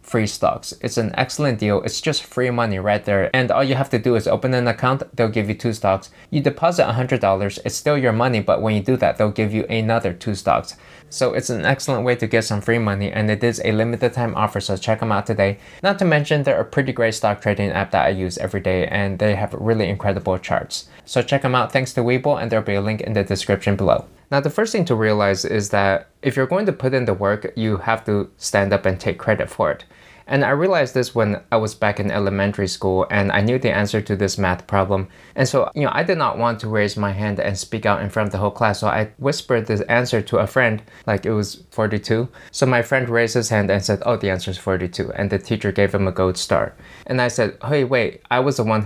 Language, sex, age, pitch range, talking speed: English, male, 20-39, 100-120 Hz, 265 wpm